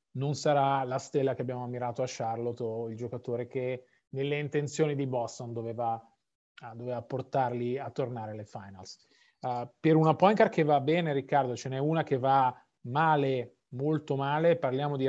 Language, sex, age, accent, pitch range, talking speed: Italian, male, 30-49, native, 130-160 Hz, 170 wpm